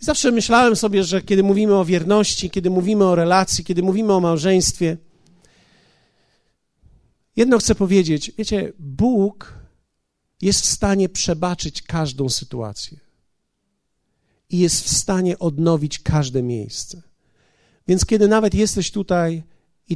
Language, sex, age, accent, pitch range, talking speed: Polish, male, 50-69, native, 165-200 Hz, 120 wpm